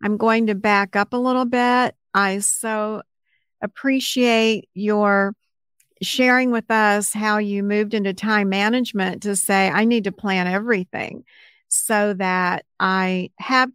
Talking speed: 140 wpm